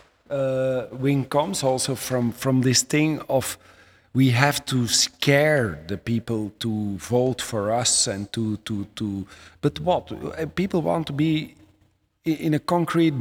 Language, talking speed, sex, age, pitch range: Spanish, 145 wpm, male, 40-59, 105-140 Hz